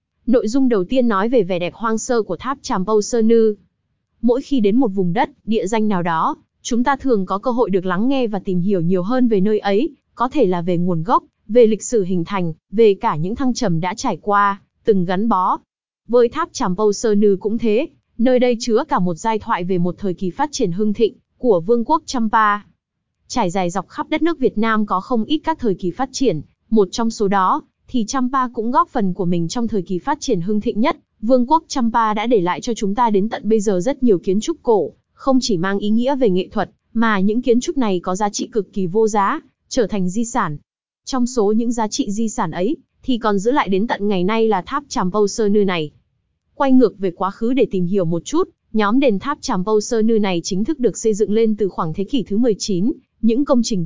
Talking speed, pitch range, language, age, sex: 250 wpm, 195-250 Hz, Vietnamese, 20-39, female